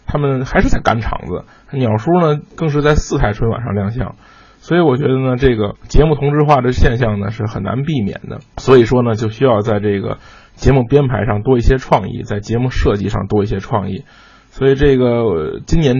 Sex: male